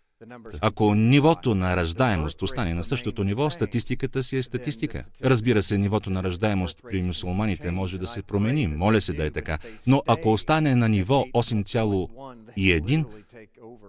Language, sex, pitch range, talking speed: Russian, male, 95-125 Hz, 145 wpm